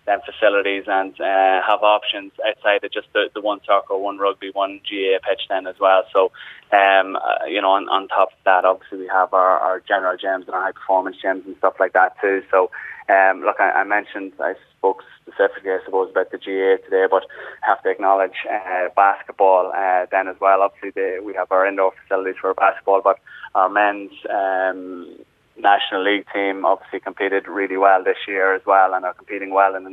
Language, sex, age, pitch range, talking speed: English, male, 20-39, 95-100 Hz, 205 wpm